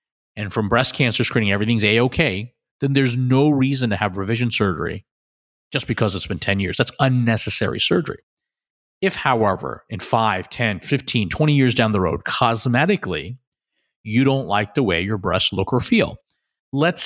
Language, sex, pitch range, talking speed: English, male, 100-130 Hz, 165 wpm